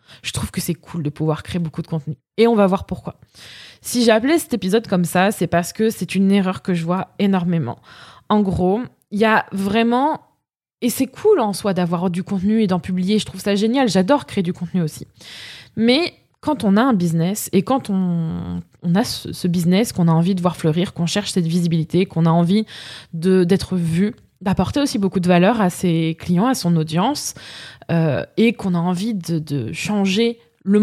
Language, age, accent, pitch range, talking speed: French, 20-39, French, 170-220 Hz, 210 wpm